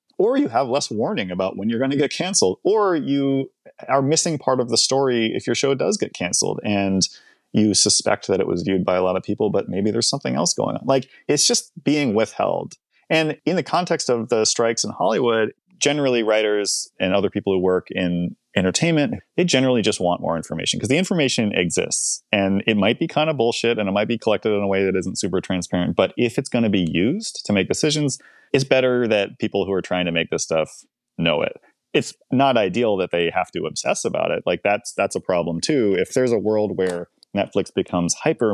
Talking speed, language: 225 wpm, English